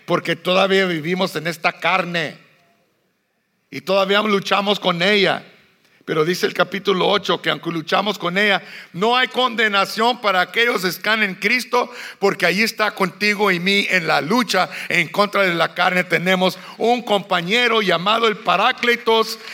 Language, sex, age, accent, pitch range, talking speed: English, male, 60-79, Mexican, 180-215 Hz, 155 wpm